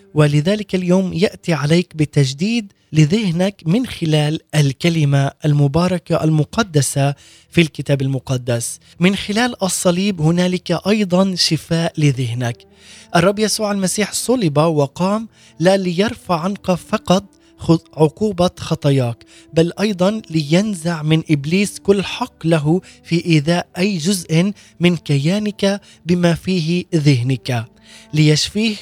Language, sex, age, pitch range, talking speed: Arabic, male, 20-39, 150-190 Hz, 105 wpm